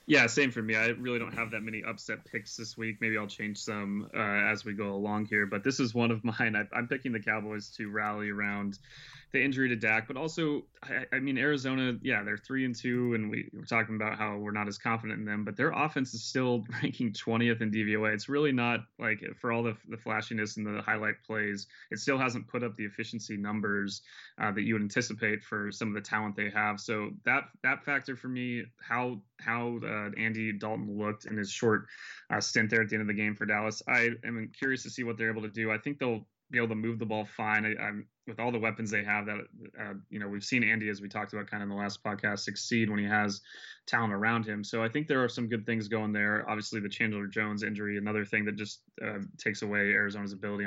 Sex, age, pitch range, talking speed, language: male, 20-39, 105-120 Hz, 245 wpm, English